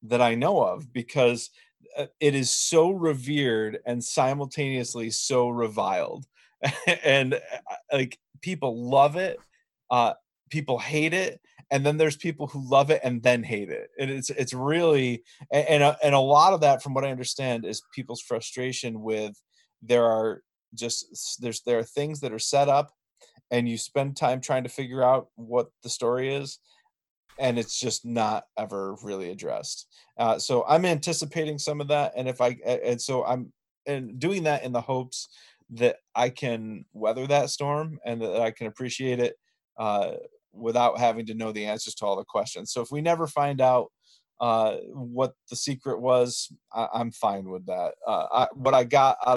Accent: American